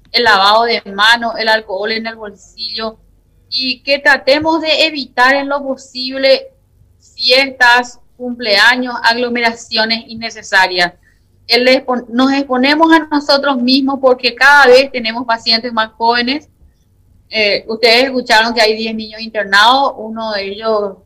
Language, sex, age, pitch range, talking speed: Spanish, female, 30-49, 210-255 Hz, 125 wpm